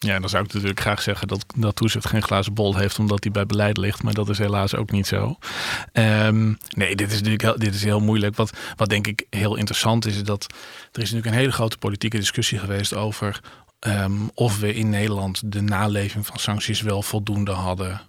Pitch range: 100-115 Hz